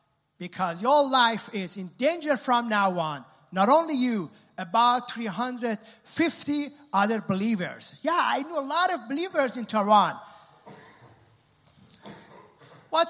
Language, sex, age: Dutch, male, 30-49